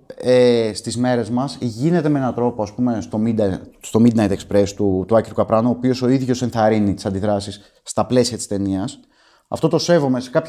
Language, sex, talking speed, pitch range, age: Greek, male, 175 wpm, 105-145 Hz, 30-49